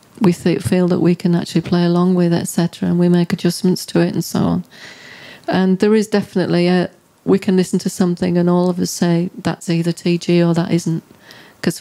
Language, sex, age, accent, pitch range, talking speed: English, female, 40-59, British, 170-185 Hz, 220 wpm